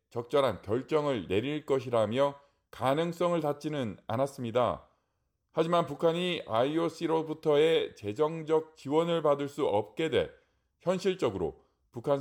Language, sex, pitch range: Korean, male, 125-165 Hz